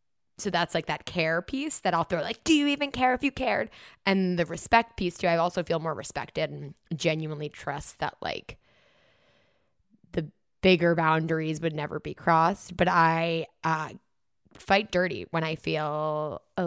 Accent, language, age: American, English, 20-39